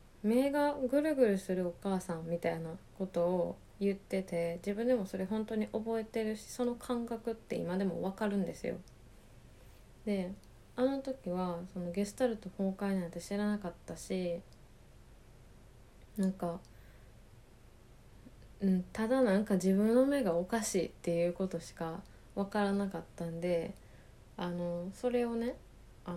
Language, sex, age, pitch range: Japanese, female, 20-39, 170-220 Hz